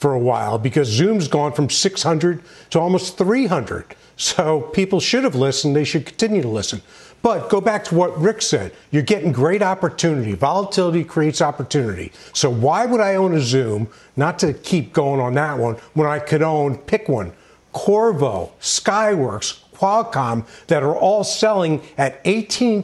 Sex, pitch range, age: male, 135-190 Hz, 50-69